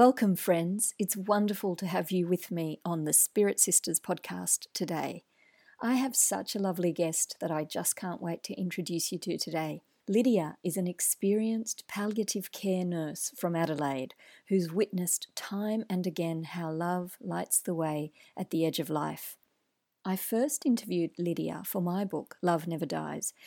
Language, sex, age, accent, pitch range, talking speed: English, female, 50-69, Australian, 165-195 Hz, 165 wpm